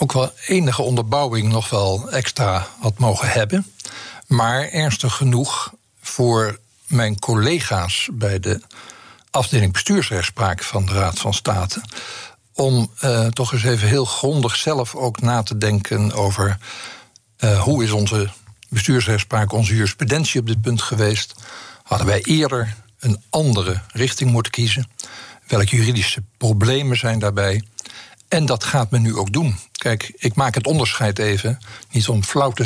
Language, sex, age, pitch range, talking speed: Dutch, male, 60-79, 105-125 Hz, 145 wpm